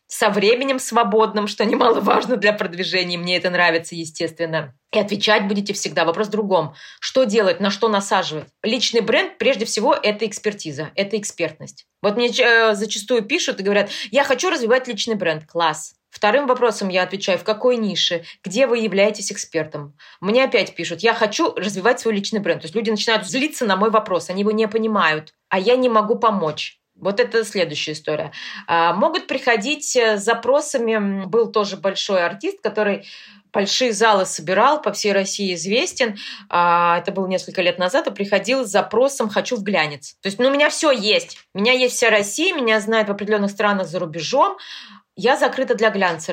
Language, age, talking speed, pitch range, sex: Russian, 20-39, 175 wpm, 175-230 Hz, female